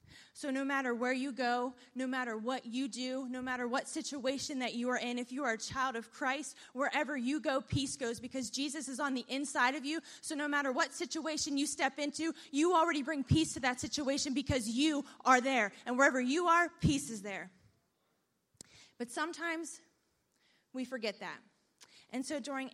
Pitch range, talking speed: 245-285 Hz, 195 wpm